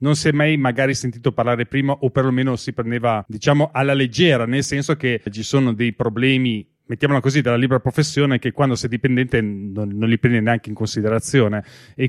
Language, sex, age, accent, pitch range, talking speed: Italian, male, 30-49, native, 120-150 Hz, 195 wpm